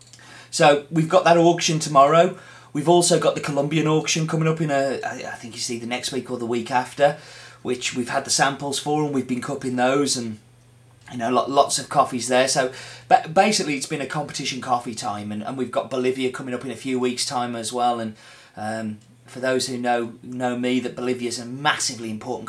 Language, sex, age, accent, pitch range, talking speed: English, male, 30-49, British, 125-180 Hz, 215 wpm